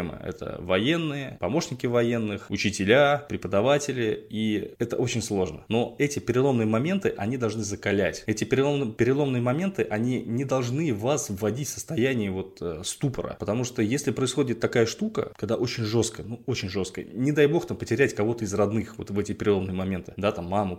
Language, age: Russian, 20-39